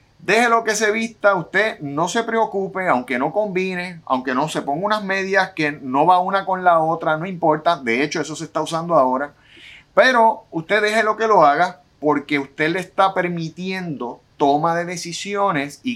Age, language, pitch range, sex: 30-49, Spanish, 140-195 Hz, male